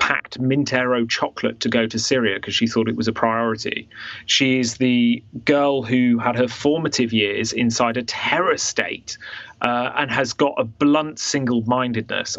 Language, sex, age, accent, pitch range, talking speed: English, male, 30-49, British, 115-135 Hz, 165 wpm